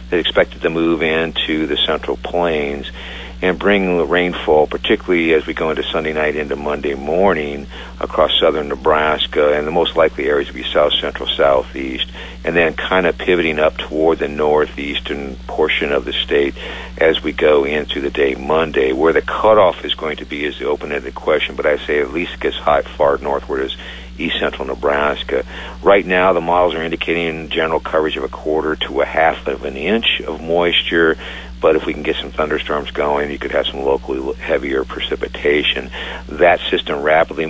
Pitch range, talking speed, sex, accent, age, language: 65-80 Hz, 185 wpm, male, American, 50-69, English